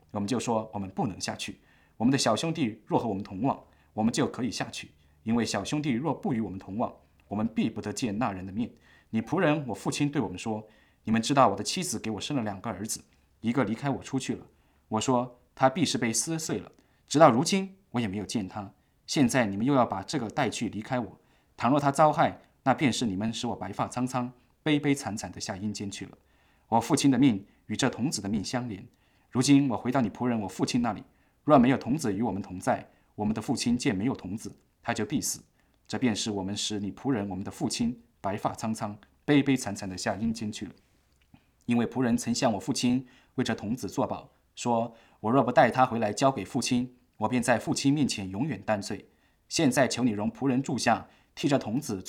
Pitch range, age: 100-130 Hz, 20-39